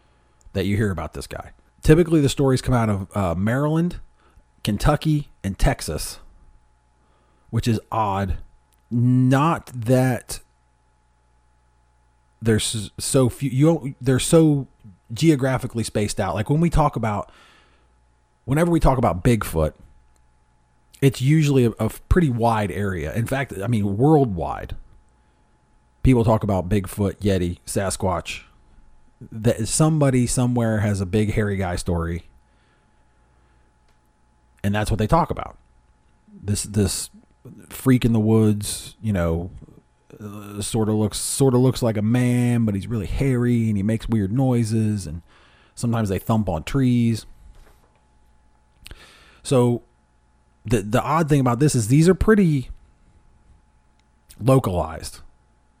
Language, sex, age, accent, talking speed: English, male, 30-49, American, 130 wpm